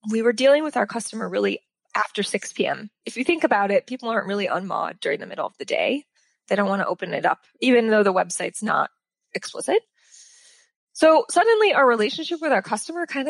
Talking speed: 210 wpm